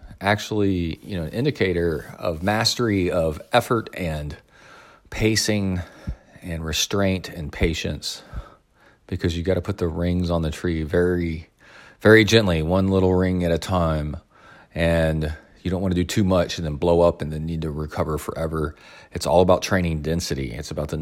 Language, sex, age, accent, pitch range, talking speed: English, male, 40-59, American, 80-100 Hz, 170 wpm